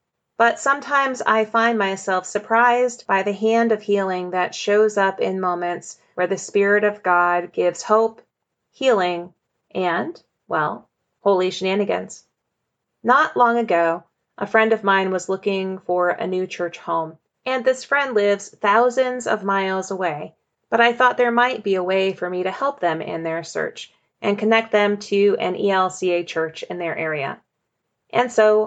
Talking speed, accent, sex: 165 wpm, American, female